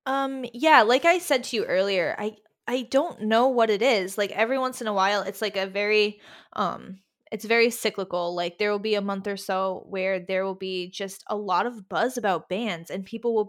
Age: 20-39